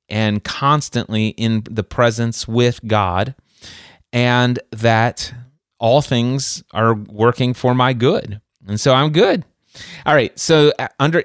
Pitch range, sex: 110-145 Hz, male